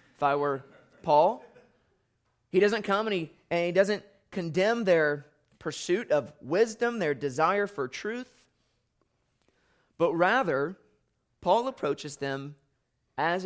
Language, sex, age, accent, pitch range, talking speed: English, male, 30-49, American, 145-200 Hz, 115 wpm